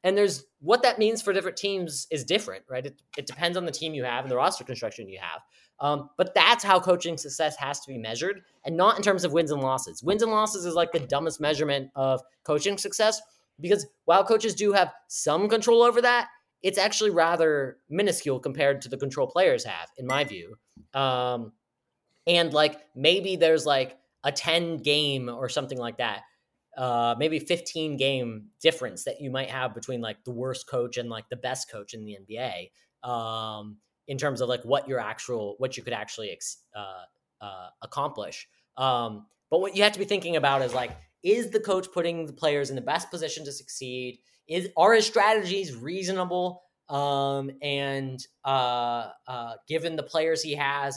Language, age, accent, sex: English, 20-39, American, male